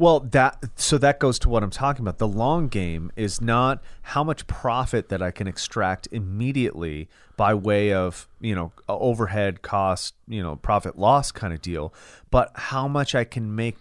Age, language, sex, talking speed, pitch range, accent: 30-49, English, male, 185 wpm, 95-120 Hz, American